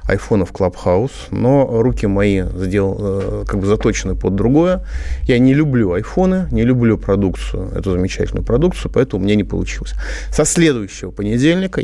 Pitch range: 95-140 Hz